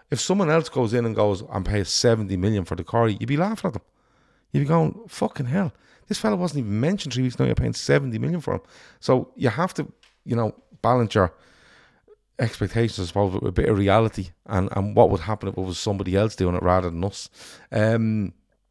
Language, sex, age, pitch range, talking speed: English, male, 30-49, 90-115 Hz, 230 wpm